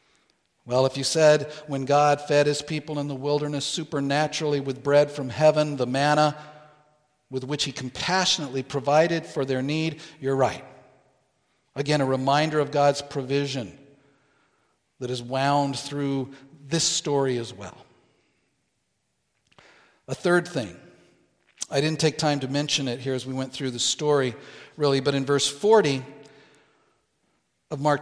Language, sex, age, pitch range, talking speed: English, male, 50-69, 140-175 Hz, 145 wpm